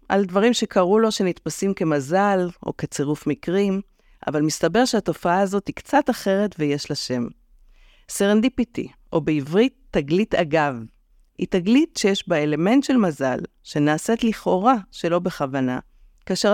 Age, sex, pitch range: 50-69, female, 155-220 Hz